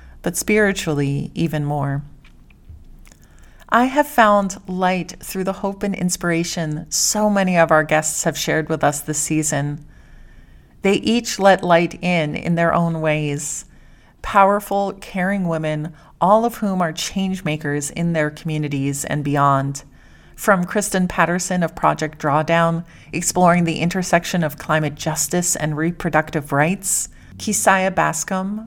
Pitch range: 155-190 Hz